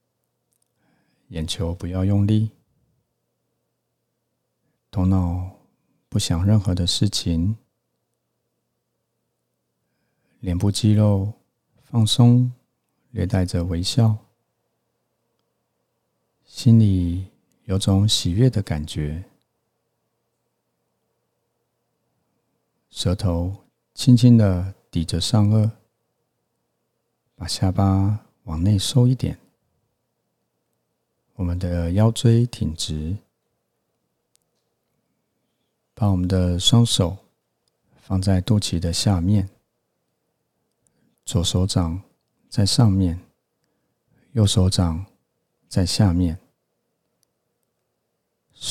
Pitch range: 90-110 Hz